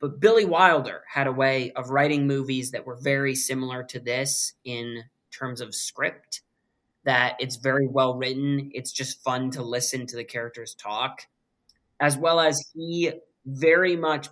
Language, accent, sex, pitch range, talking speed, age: English, American, male, 125-145 Hz, 160 wpm, 20-39